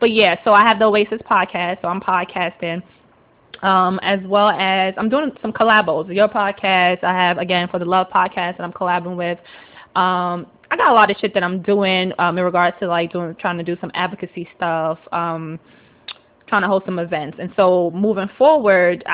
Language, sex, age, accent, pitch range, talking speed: English, female, 20-39, American, 175-205 Hz, 200 wpm